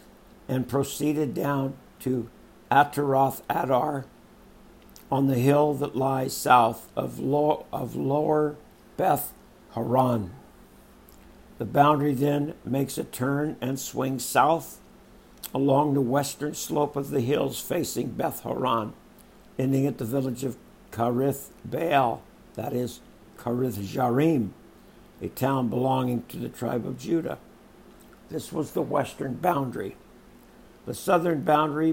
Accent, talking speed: American, 120 wpm